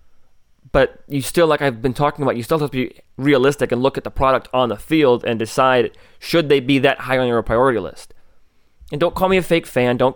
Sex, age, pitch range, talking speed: male, 20-39, 110-135 Hz, 240 wpm